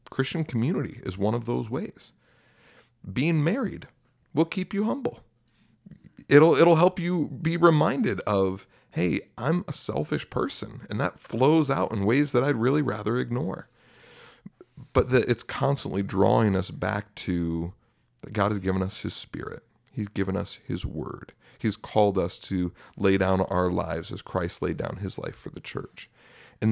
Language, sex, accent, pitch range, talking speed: English, male, American, 95-130 Hz, 165 wpm